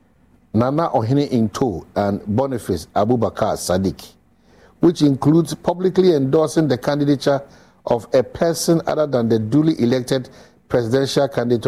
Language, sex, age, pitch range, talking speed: English, male, 60-79, 115-155 Hz, 125 wpm